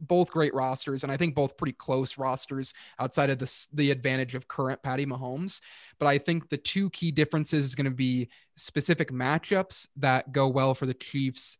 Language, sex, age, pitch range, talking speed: English, male, 20-39, 130-150 Hz, 195 wpm